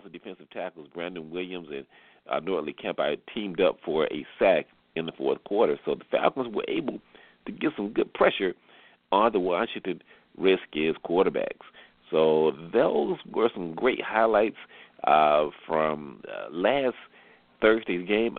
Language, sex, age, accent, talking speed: English, male, 40-59, American, 145 wpm